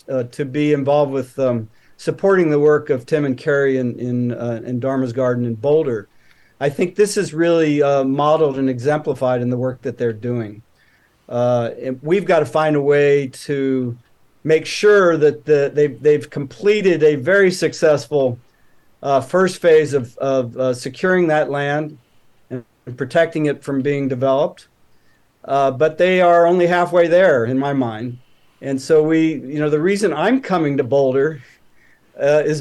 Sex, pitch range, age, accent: male, 130-160 Hz, 50-69, American